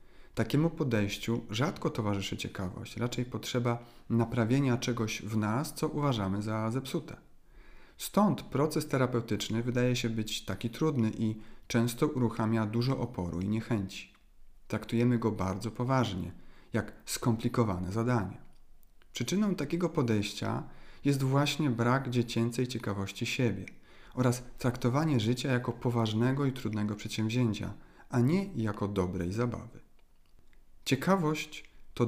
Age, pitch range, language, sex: 40-59, 105-130 Hz, Polish, male